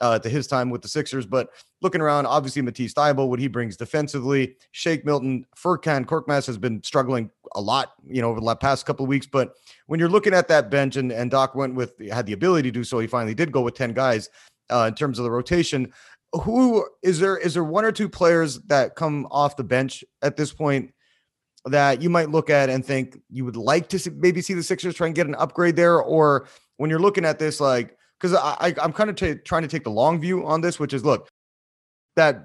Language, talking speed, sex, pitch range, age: English, 240 wpm, male, 125-155 Hz, 30-49